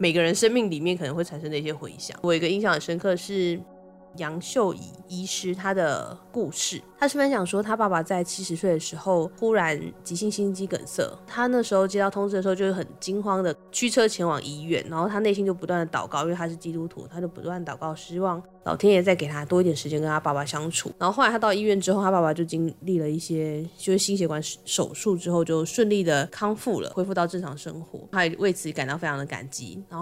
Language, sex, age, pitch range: Chinese, female, 20-39, 165-195 Hz